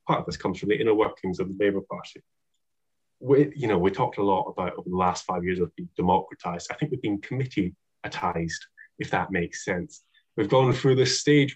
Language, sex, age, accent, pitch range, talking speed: English, male, 20-39, British, 90-130 Hz, 220 wpm